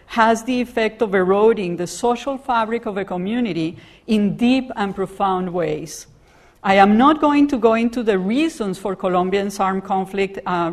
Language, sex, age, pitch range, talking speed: English, female, 50-69, 190-235 Hz, 170 wpm